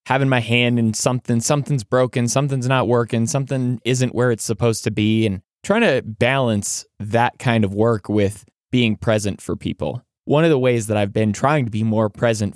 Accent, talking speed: American, 200 wpm